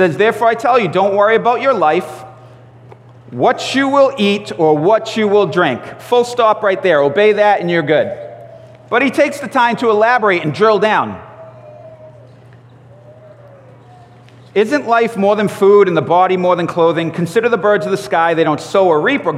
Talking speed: 190 wpm